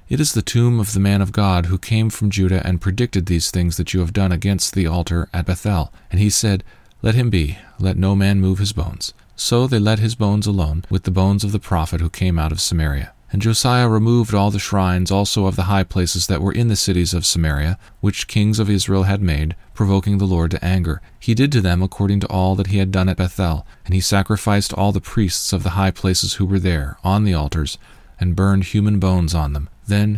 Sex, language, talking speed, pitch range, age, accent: male, English, 240 wpm, 90-105 Hz, 40-59, American